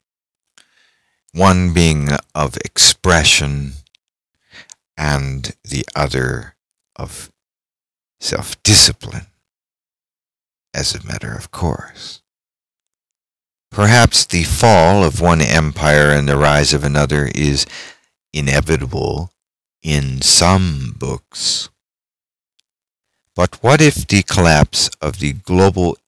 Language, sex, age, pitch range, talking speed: English, male, 50-69, 70-95 Hz, 85 wpm